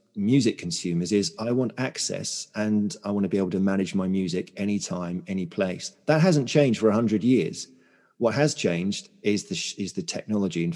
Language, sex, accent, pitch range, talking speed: English, male, British, 95-120 Hz, 195 wpm